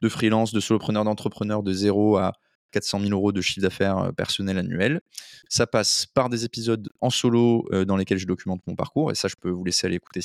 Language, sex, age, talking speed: French, male, 20-39, 215 wpm